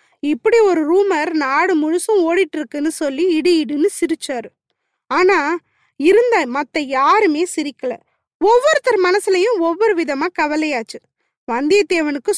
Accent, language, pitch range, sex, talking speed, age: native, Tamil, 300-395 Hz, female, 100 wpm, 20-39